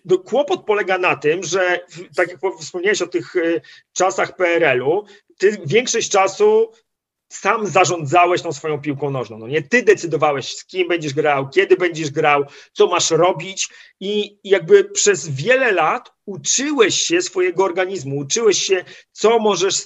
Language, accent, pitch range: Polish, native, 165-215 Hz